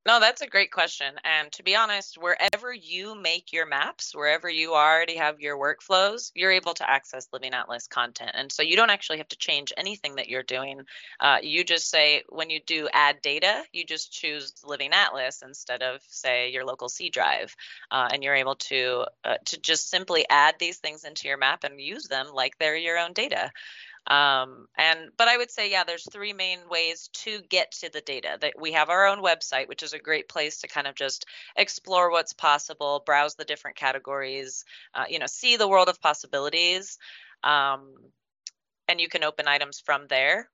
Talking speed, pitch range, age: 205 wpm, 135-175 Hz, 30-49